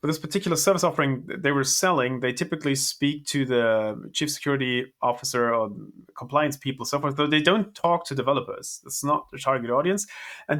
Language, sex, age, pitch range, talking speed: English, male, 30-49, 130-160 Hz, 180 wpm